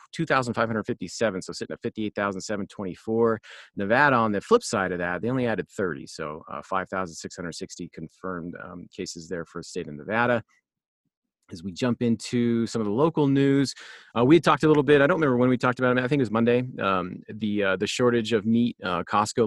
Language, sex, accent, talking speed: English, male, American, 205 wpm